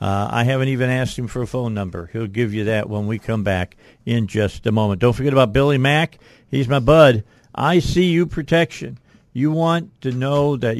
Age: 50-69